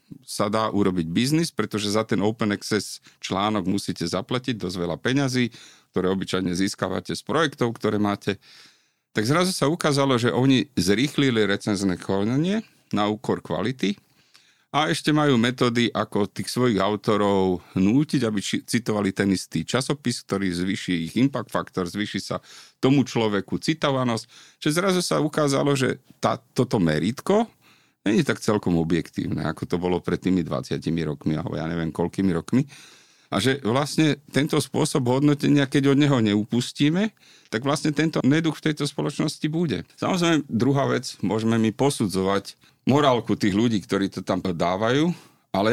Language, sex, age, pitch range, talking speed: Slovak, male, 40-59, 95-135 Hz, 150 wpm